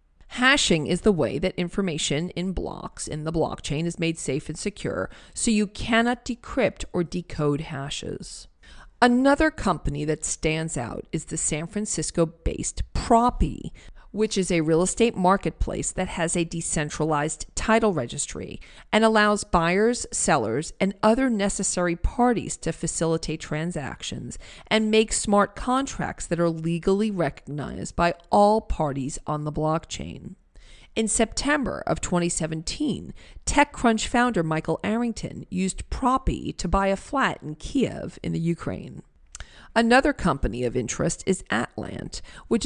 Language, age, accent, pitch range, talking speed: English, 40-59, American, 160-215 Hz, 135 wpm